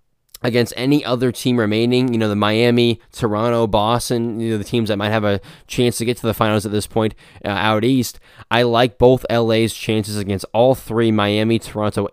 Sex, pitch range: male, 105-125 Hz